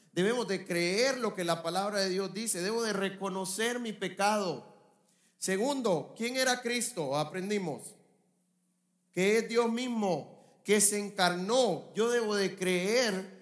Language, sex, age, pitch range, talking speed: English, male, 40-59, 175-215 Hz, 140 wpm